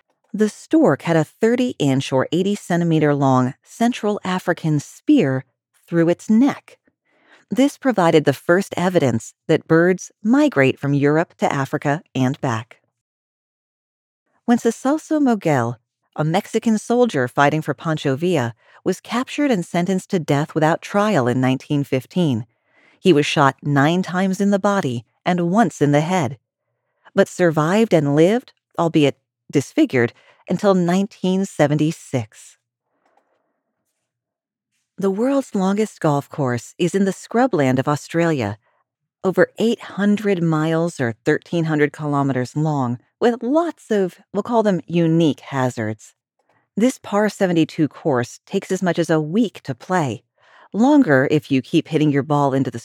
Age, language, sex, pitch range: 40-59, English, female, 140-200 Hz